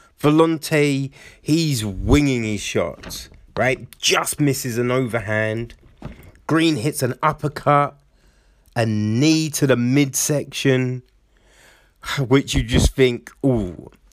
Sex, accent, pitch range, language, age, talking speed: male, British, 120-150 Hz, English, 30-49, 100 wpm